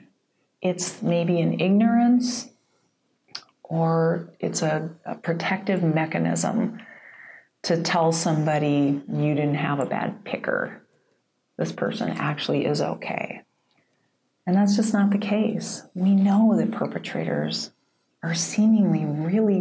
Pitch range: 170-220 Hz